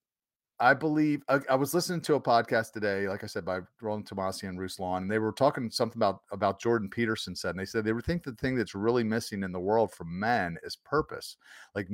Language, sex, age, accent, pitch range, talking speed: English, male, 40-59, American, 105-140 Hz, 230 wpm